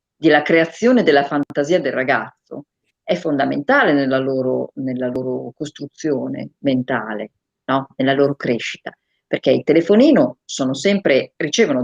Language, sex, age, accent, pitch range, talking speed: Italian, female, 40-59, native, 135-195 Hz, 120 wpm